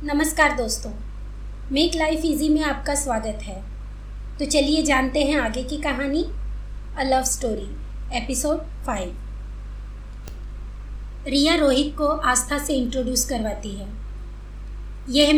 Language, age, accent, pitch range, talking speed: Hindi, 20-39, native, 225-295 Hz, 120 wpm